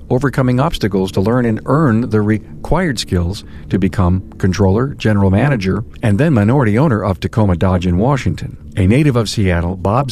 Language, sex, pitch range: English, male, 95-120 Hz